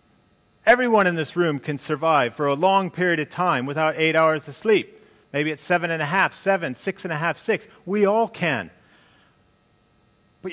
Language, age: English, 40-59